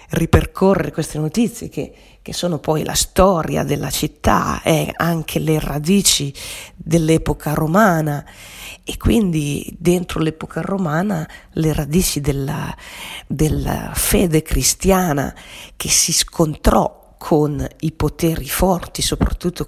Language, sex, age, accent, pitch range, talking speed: Italian, female, 40-59, native, 140-170 Hz, 110 wpm